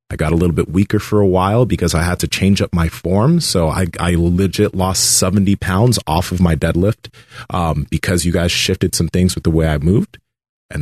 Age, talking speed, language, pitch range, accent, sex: 30-49, 225 wpm, English, 85-110 Hz, American, male